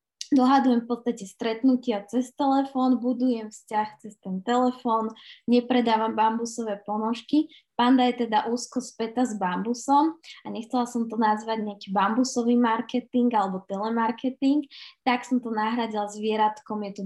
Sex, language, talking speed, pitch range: female, Slovak, 130 wpm, 210-245 Hz